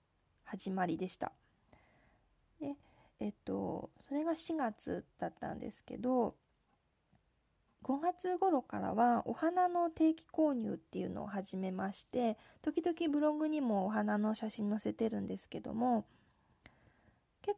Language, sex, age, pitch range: Japanese, female, 20-39, 210-300 Hz